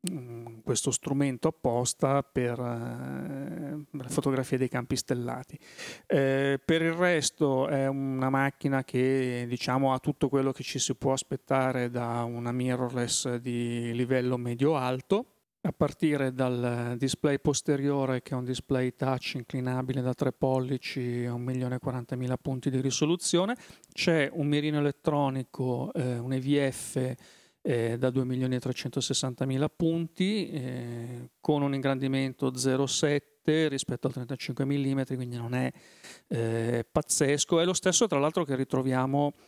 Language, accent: Italian, native